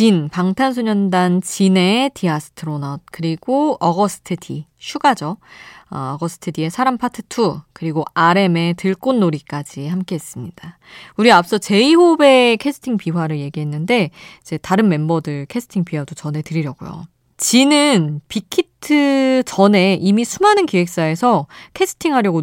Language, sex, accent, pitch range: Korean, female, native, 160-225 Hz